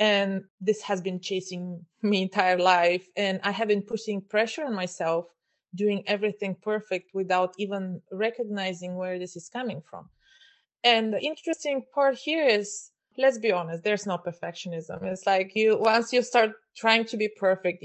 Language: English